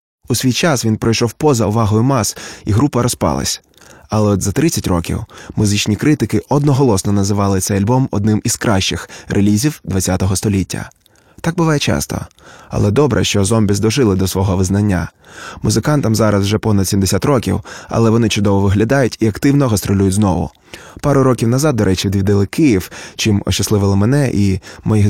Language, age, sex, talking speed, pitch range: Ukrainian, 20-39, male, 155 wpm, 100-115 Hz